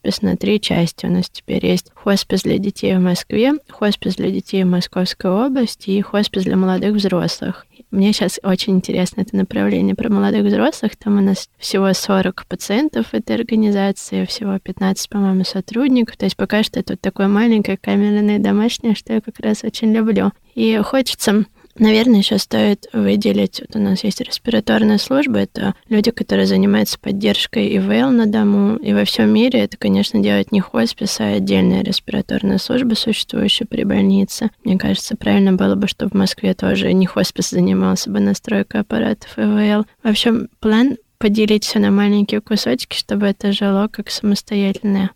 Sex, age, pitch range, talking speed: female, 20-39, 195-220 Hz, 165 wpm